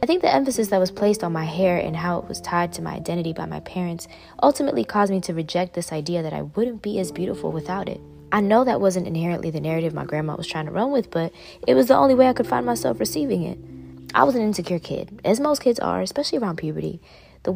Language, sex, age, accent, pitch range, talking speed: English, female, 20-39, American, 155-205 Hz, 255 wpm